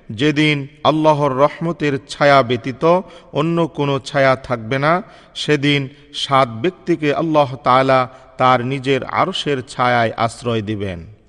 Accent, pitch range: native, 130-155 Hz